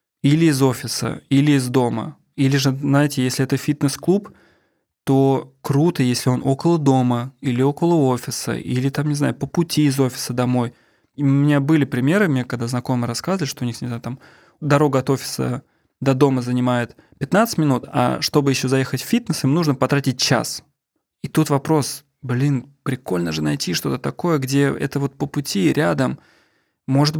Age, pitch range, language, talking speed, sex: 20-39, 125-150 Hz, Russian, 170 wpm, male